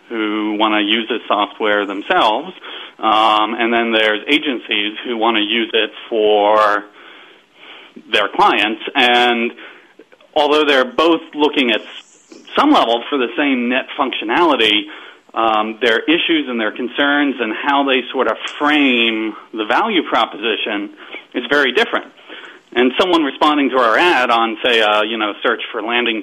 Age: 40-59